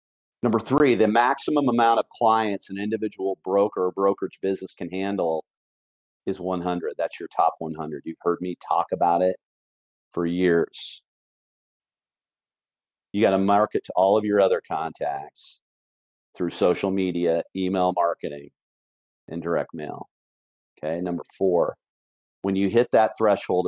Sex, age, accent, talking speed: male, 40-59, American, 140 wpm